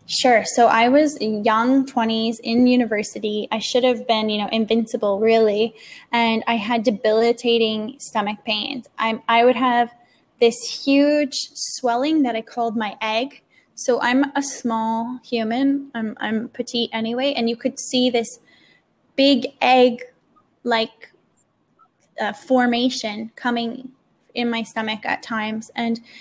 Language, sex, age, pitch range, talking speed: English, female, 10-29, 225-250 Hz, 135 wpm